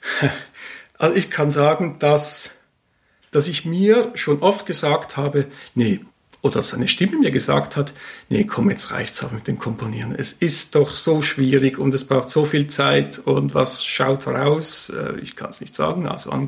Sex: male